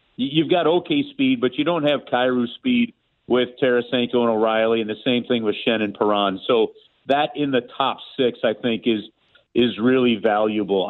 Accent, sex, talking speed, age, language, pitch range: American, male, 185 wpm, 50-69, English, 115-145 Hz